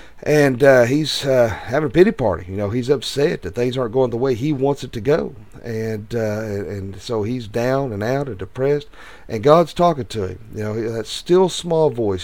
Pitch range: 100-135 Hz